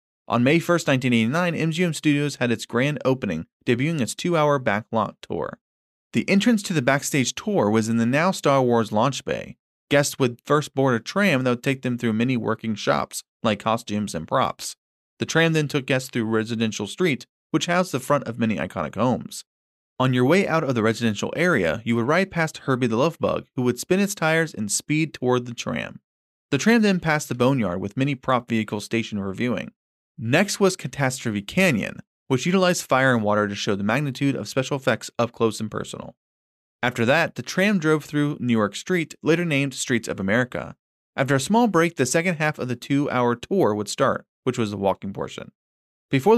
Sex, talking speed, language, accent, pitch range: male, 200 wpm, English, American, 115-155 Hz